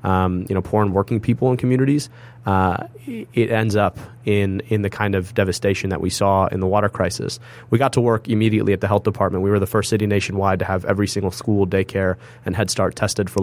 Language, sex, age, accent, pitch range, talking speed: English, male, 30-49, American, 95-110 Hz, 230 wpm